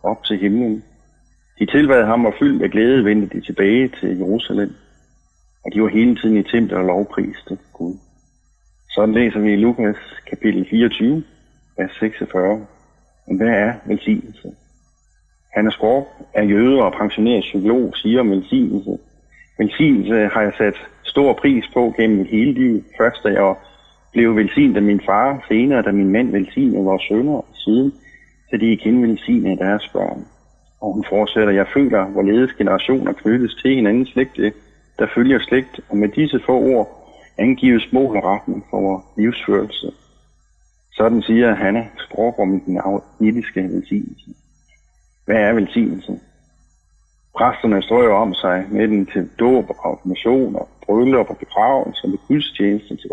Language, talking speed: Danish, 150 wpm